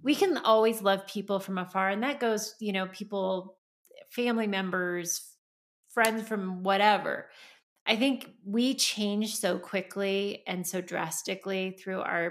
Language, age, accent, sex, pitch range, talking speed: English, 30-49, American, female, 185-225 Hz, 140 wpm